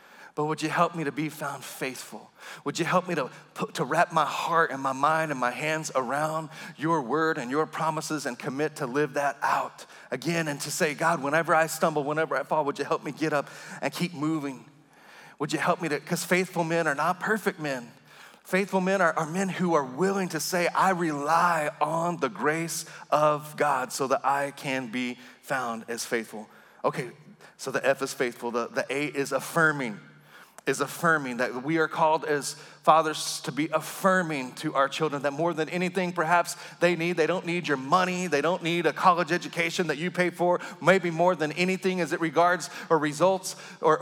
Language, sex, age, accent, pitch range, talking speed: English, male, 30-49, American, 150-180 Hz, 205 wpm